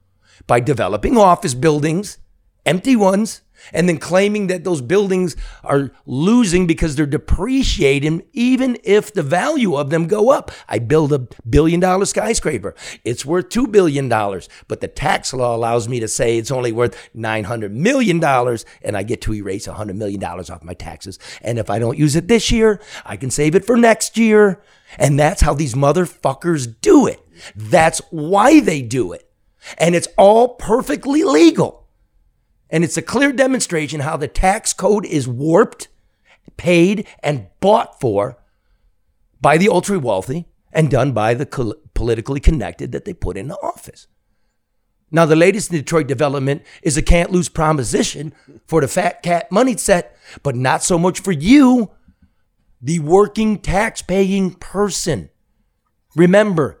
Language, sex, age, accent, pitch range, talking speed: English, male, 50-69, American, 120-195 Hz, 155 wpm